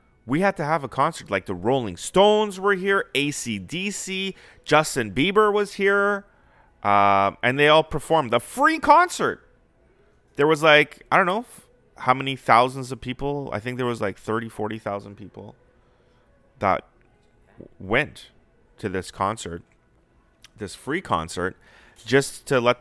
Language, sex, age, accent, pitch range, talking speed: English, male, 30-49, American, 100-140 Hz, 145 wpm